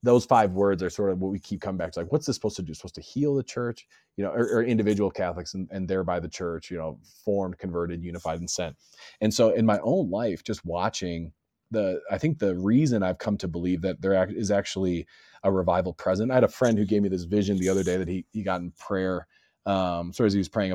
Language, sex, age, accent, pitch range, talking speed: English, male, 30-49, American, 90-105 Hz, 260 wpm